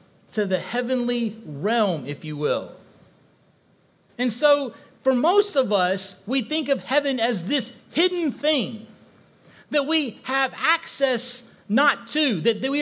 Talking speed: 135 wpm